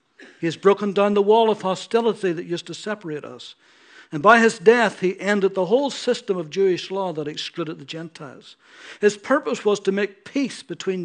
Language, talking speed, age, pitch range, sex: English, 195 wpm, 60-79, 165-215 Hz, male